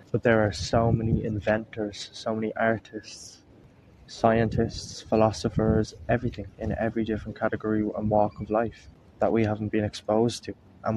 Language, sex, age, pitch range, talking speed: English, male, 20-39, 105-115 Hz, 150 wpm